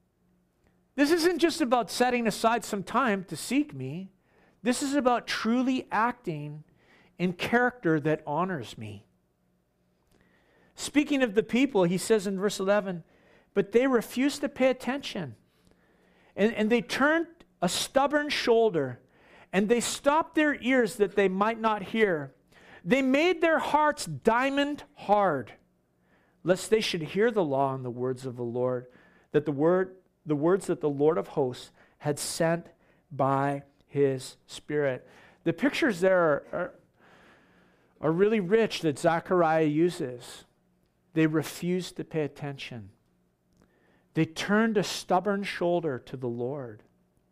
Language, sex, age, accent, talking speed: English, male, 50-69, American, 140 wpm